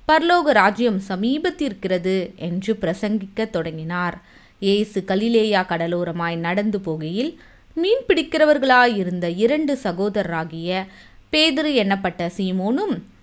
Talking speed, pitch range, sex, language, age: 60 wpm, 180-255 Hz, female, Tamil, 20-39